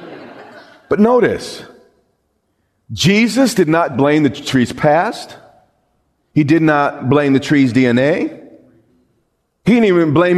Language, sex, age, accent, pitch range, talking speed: English, male, 40-59, American, 125-180 Hz, 115 wpm